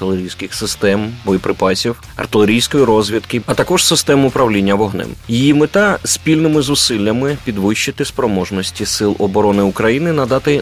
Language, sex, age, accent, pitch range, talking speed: Ukrainian, male, 20-39, native, 100-125 Hz, 115 wpm